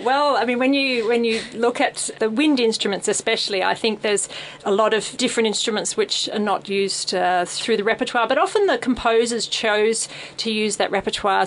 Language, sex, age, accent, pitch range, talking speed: English, female, 40-59, Australian, 195-235 Hz, 200 wpm